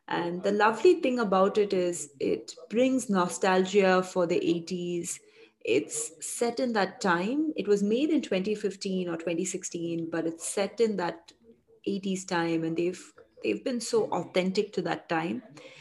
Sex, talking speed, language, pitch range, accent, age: female, 155 wpm, English, 175-220 Hz, Indian, 30-49